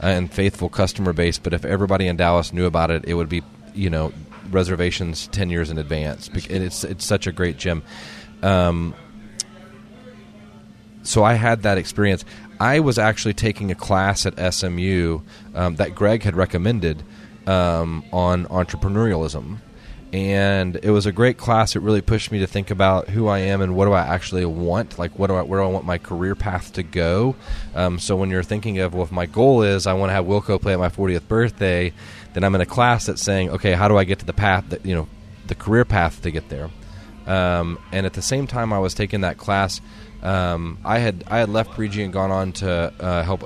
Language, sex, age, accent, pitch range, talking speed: English, male, 30-49, American, 90-105 Hz, 215 wpm